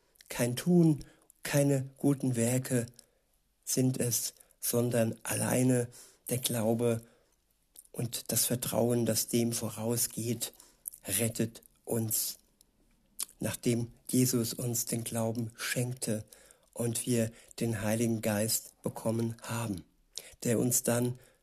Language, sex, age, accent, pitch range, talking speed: German, male, 60-79, German, 115-130 Hz, 100 wpm